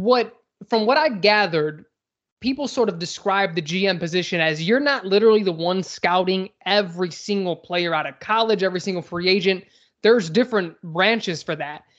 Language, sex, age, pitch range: English, male, 20-39, 170-210 Hz